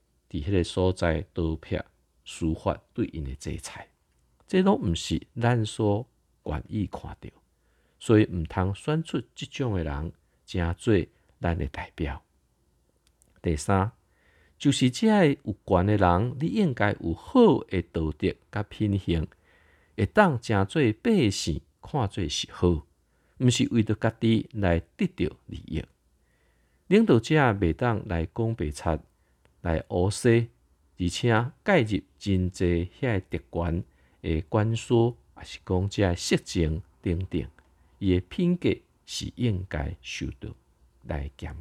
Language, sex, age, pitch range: Chinese, male, 50-69, 80-115 Hz